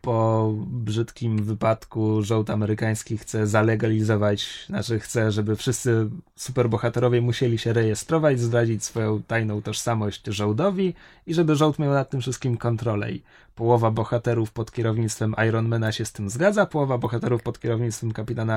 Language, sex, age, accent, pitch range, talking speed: Polish, male, 20-39, native, 110-175 Hz, 140 wpm